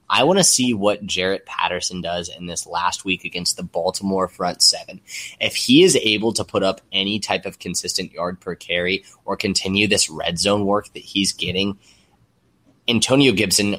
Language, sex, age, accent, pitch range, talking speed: English, male, 20-39, American, 90-100 Hz, 185 wpm